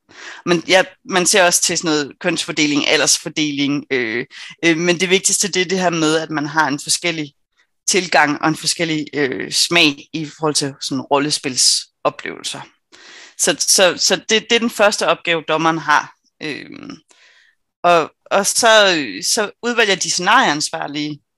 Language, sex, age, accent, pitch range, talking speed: Danish, female, 30-49, native, 155-190 Hz, 155 wpm